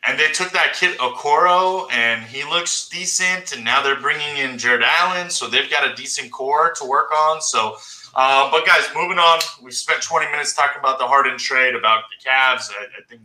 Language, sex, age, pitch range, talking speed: English, male, 20-39, 120-175 Hz, 215 wpm